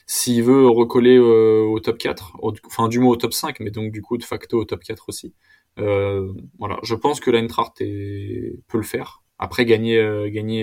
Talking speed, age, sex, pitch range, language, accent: 210 wpm, 20-39, male, 105-120 Hz, French, French